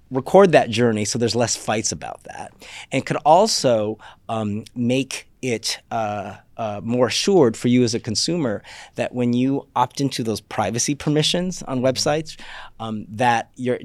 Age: 30-49